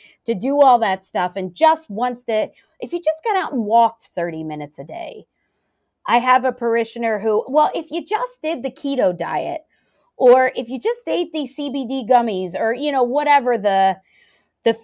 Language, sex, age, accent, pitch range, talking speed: English, female, 30-49, American, 185-250 Hz, 190 wpm